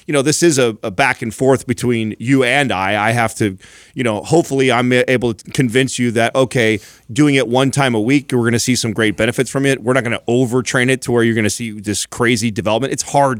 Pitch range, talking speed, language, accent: 115-135 Hz, 260 wpm, English, American